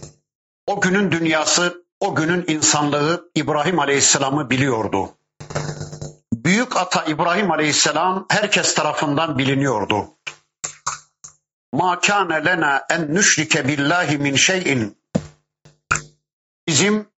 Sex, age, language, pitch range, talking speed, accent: male, 50-69, Turkish, 150-185 Hz, 80 wpm, native